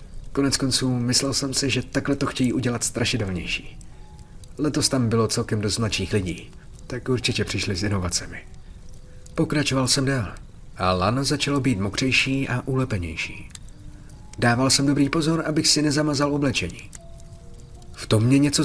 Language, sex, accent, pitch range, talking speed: Czech, male, native, 105-140 Hz, 145 wpm